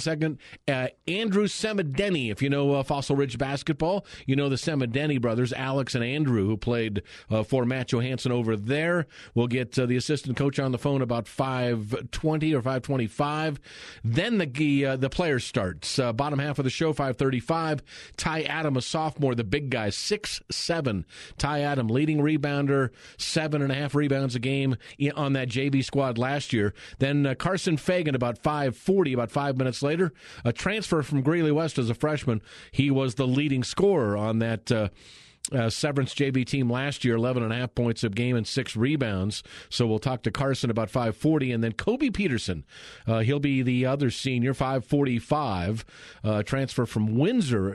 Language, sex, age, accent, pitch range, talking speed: English, male, 40-59, American, 120-145 Hz, 175 wpm